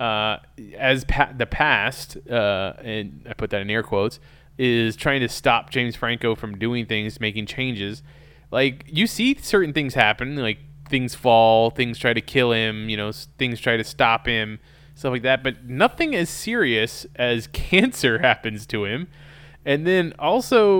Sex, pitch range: male, 115-145 Hz